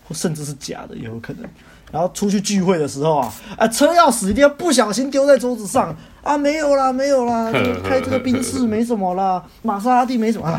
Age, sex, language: 20-39, male, Chinese